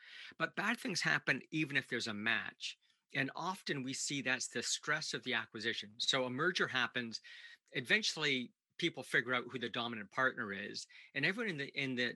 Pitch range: 120-145 Hz